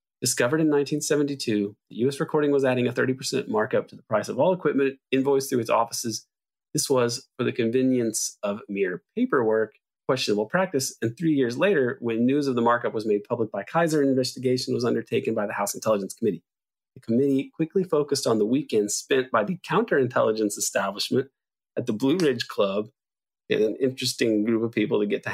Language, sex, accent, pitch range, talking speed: English, male, American, 110-145 Hz, 190 wpm